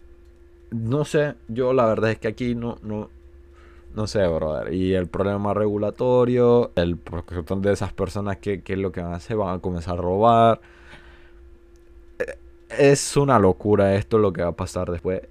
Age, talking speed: 20-39, 175 wpm